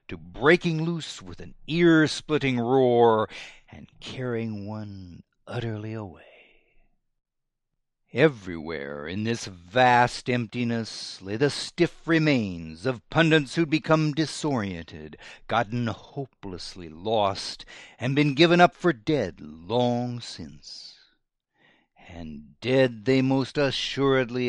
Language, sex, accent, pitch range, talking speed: English, male, American, 100-155 Hz, 105 wpm